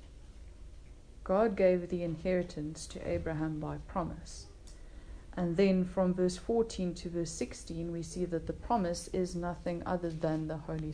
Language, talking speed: English, 150 wpm